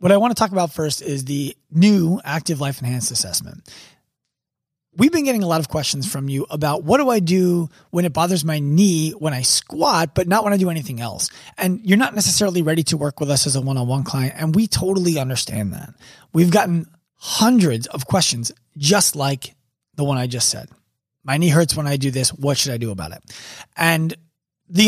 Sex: male